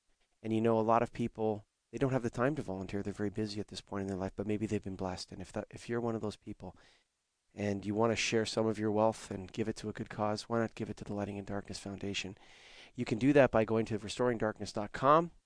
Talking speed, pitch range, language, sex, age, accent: 280 wpm, 100-120 Hz, English, male, 30-49, American